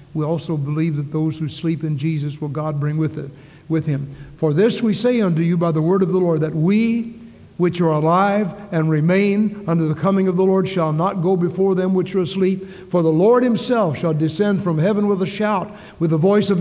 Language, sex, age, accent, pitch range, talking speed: English, male, 60-79, American, 150-185 Hz, 230 wpm